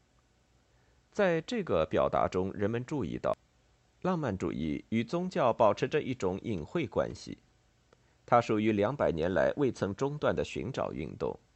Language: Chinese